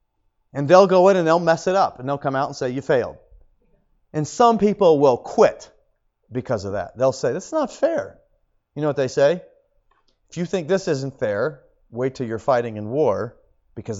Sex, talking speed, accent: male, 205 wpm, American